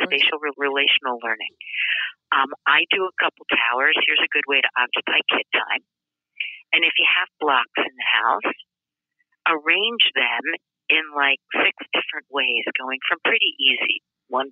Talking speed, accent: 155 wpm, American